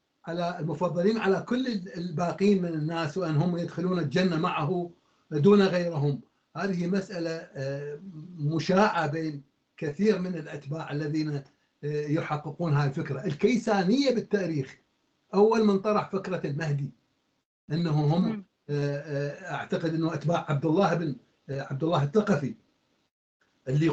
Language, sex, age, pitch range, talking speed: Arabic, male, 60-79, 145-180 Hz, 110 wpm